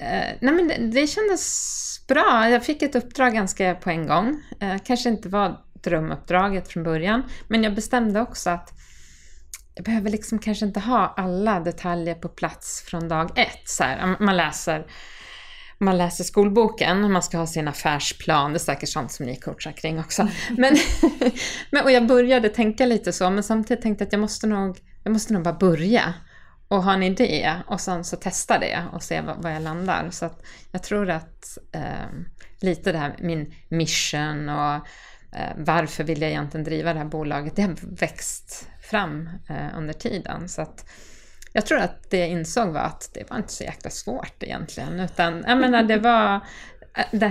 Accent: Swedish